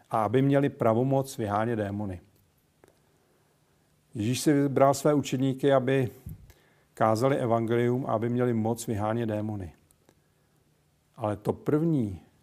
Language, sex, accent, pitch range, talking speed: Czech, male, native, 105-120 Hz, 110 wpm